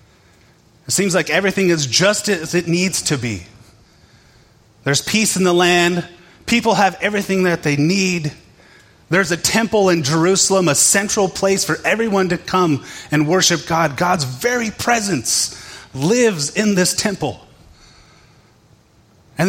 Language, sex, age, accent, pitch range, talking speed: English, male, 30-49, American, 110-170 Hz, 140 wpm